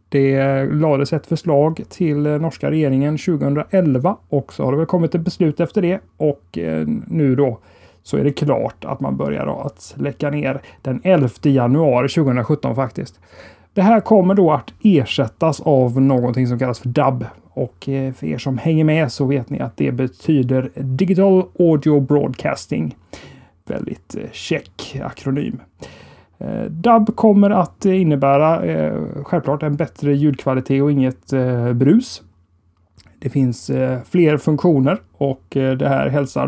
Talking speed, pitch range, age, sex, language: 140 wpm, 125-160 Hz, 30-49, male, Swedish